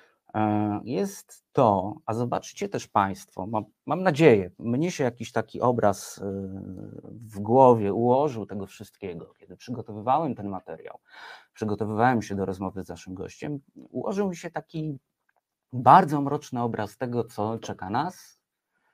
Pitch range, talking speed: 100-140 Hz, 130 wpm